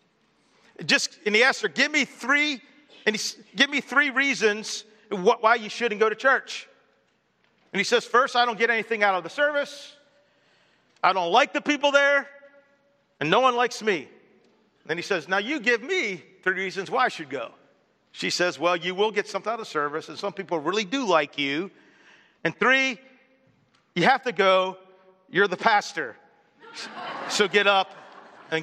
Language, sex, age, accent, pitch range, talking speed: English, male, 50-69, American, 160-235 Hz, 180 wpm